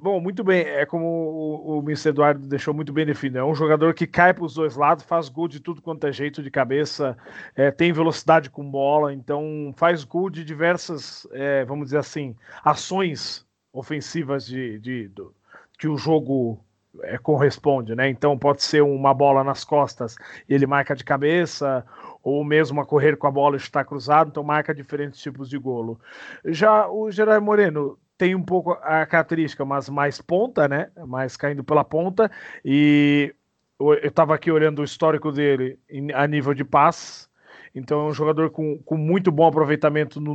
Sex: male